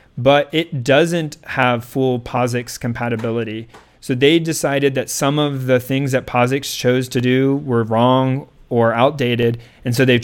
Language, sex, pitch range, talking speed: English, male, 120-145 Hz, 160 wpm